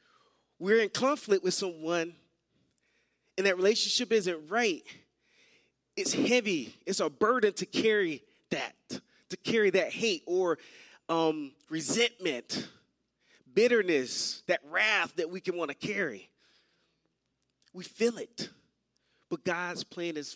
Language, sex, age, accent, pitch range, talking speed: English, male, 30-49, American, 165-215 Hz, 120 wpm